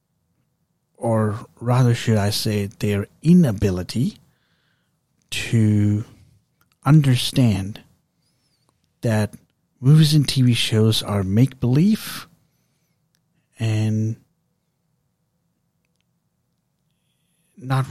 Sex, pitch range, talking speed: male, 110-150 Hz, 60 wpm